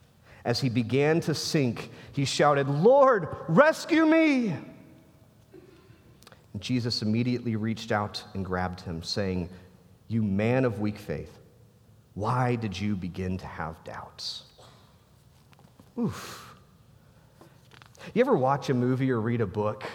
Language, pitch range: English, 110-170 Hz